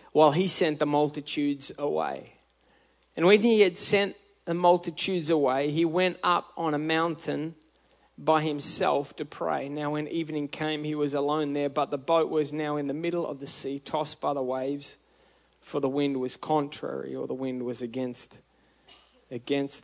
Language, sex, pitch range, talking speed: English, male, 150-175 Hz, 180 wpm